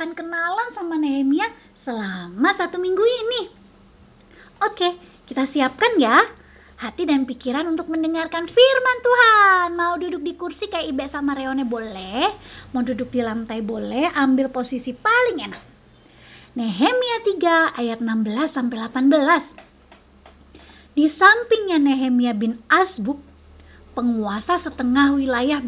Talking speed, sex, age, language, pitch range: 120 wpm, female, 20-39, Indonesian, 235-345 Hz